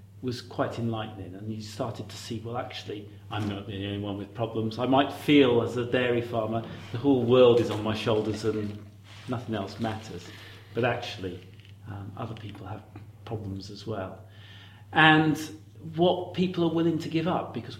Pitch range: 105-130 Hz